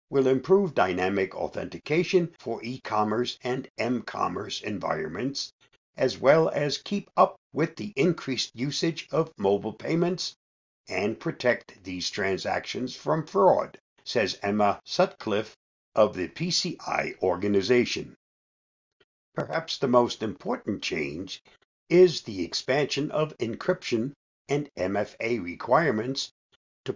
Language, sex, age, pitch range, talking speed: English, male, 60-79, 105-170 Hz, 105 wpm